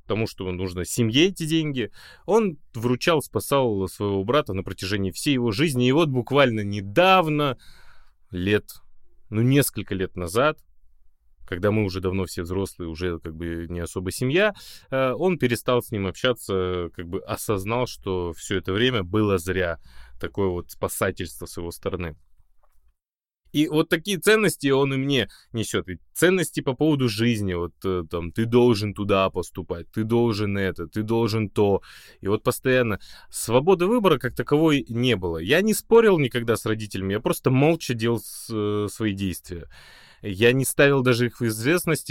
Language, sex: Russian, male